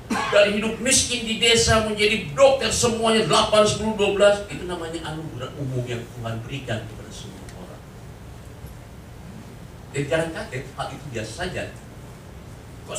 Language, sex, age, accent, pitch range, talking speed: English, male, 40-59, Indonesian, 120-180 Hz, 130 wpm